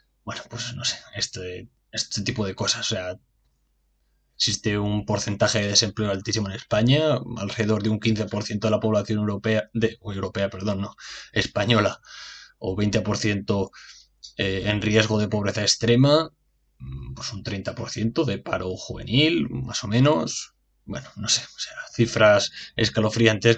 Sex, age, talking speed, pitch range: male, 20-39, 140 wpm, 100-115 Hz